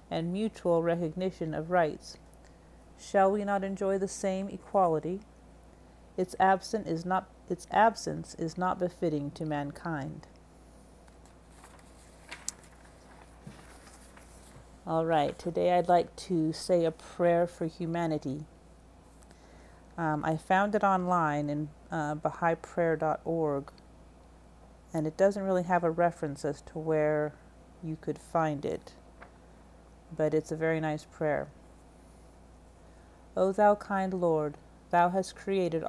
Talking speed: 115 wpm